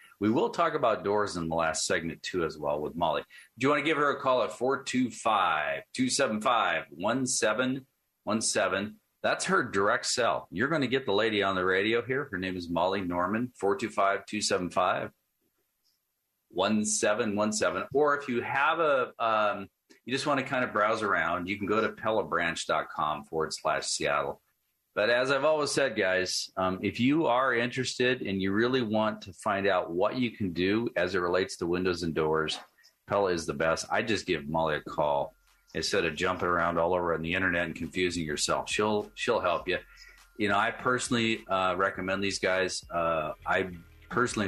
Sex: male